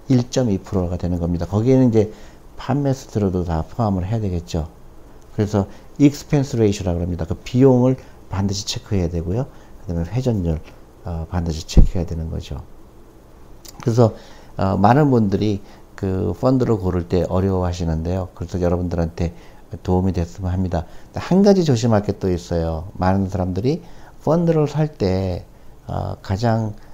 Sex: male